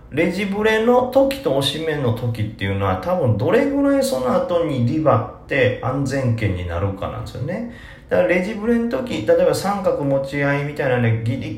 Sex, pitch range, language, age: male, 110-160 Hz, Japanese, 40-59